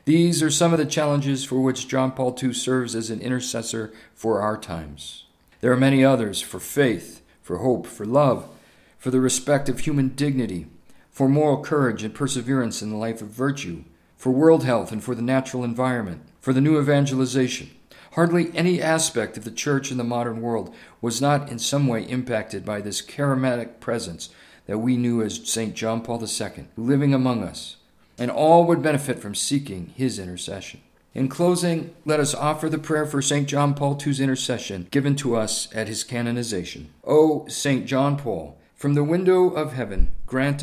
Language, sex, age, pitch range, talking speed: English, male, 50-69, 115-140 Hz, 185 wpm